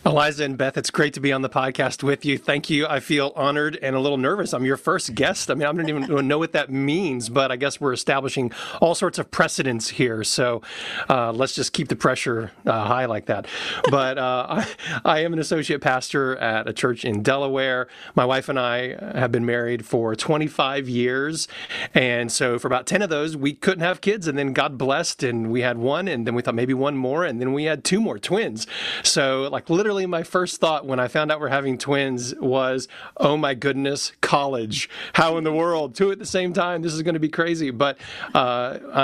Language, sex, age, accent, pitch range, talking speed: English, male, 40-59, American, 125-150 Hz, 225 wpm